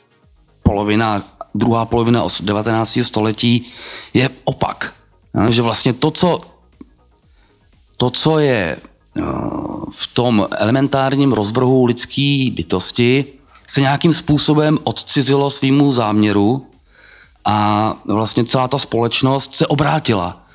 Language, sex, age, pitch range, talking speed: Czech, male, 30-49, 115-145 Hz, 100 wpm